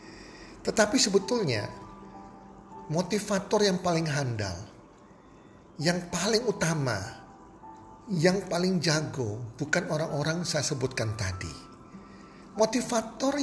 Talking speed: 80 wpm